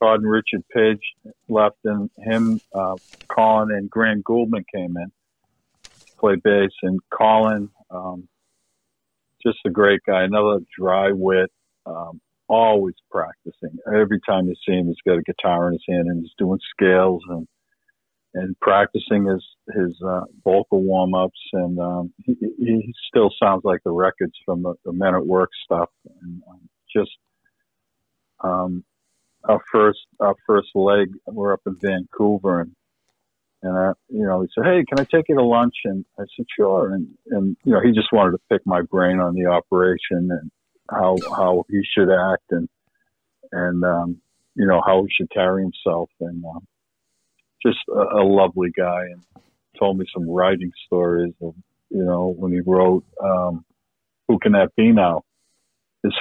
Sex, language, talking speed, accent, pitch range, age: male, English, 165 wpm, American, 90-105 Hz, 50-69